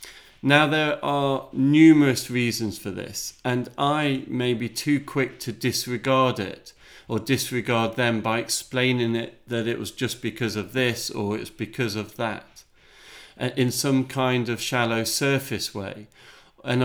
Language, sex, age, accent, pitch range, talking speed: English, male, 40-59, British, 110-130 Hz, 150 wpm